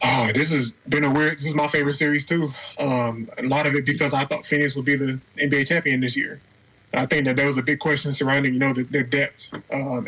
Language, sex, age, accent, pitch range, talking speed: English, male, 20-39, American, 135-155 Hz, 260 wpm